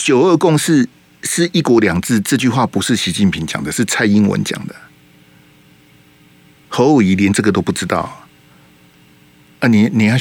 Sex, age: male, 50-69